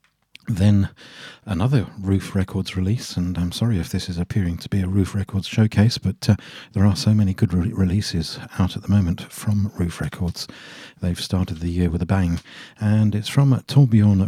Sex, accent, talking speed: male, British, 190 wpm